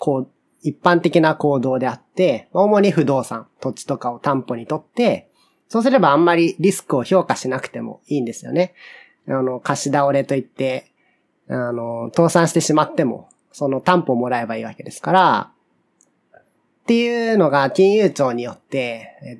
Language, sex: Japanese, male